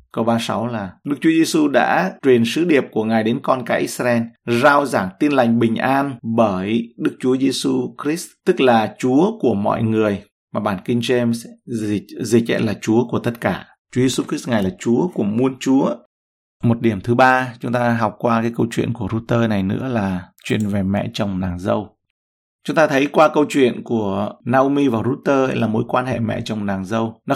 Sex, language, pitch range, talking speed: male, Vietnamese, 105-130 Hz, 215 wpm